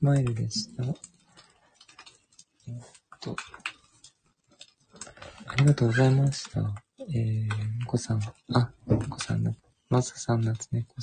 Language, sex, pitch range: Japanese, male, 110-130 Hz